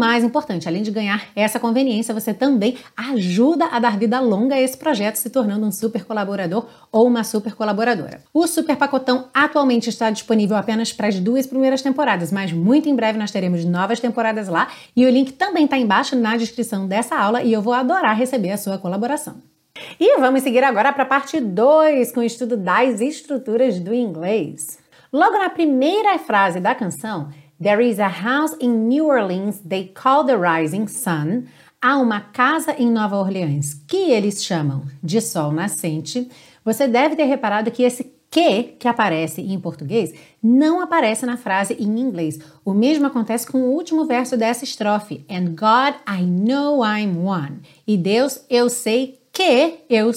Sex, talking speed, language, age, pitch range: female, 180 wpm, Portuguese, 30-49, 205-265 Hz